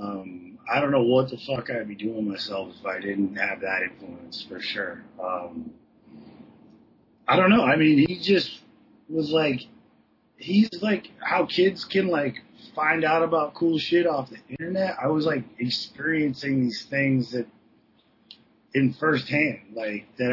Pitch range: 125-180 Hz